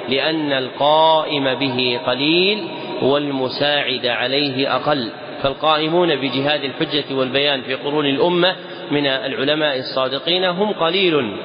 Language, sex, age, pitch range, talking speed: Arabic, male, 40-59, 140-170 Hz, 100 wpm